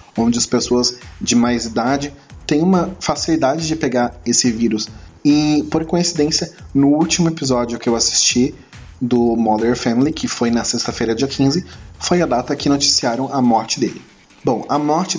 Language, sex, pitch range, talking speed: Portuguese, male, 115-140 Hz, 165 wpm